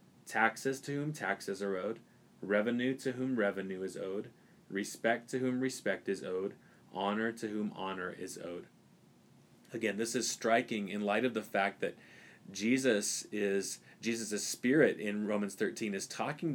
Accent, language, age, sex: American, English, 30-49, male